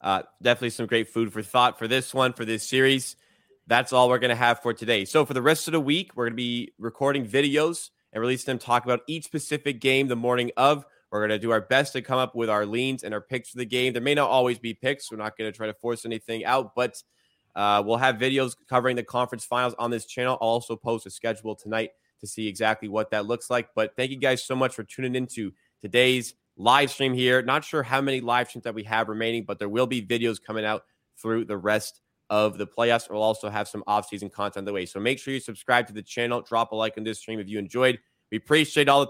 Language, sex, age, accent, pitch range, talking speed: English, male, 20-39, American, 110-130 Hz, 260 wpm